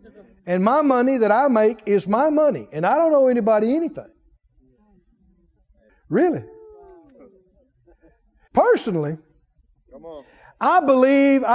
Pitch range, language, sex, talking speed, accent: 215-295 Hz, English, male, 100 wpm, American